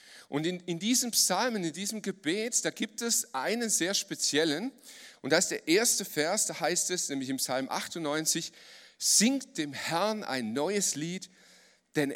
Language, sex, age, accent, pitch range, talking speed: German, male, 40-59, German, 160-225 Hz, 170 wpm